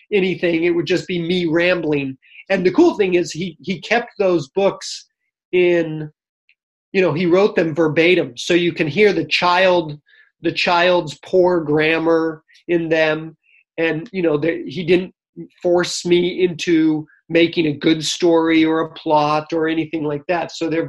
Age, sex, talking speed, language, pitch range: 30-49, male, 165 wpm, English, 155-180 Hz